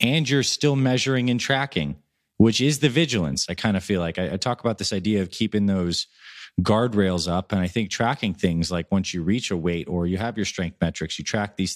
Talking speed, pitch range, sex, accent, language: 230 wpm, 90-115 Hz, male, American, English